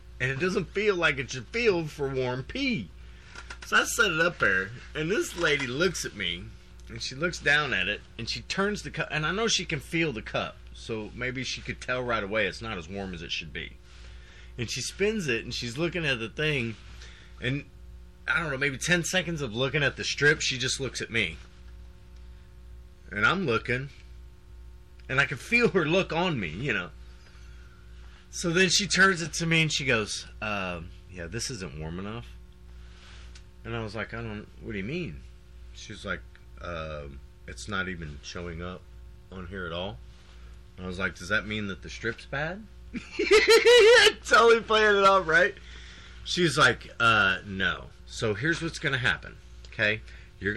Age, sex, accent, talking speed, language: 30-49, male, American, 195 wpm, English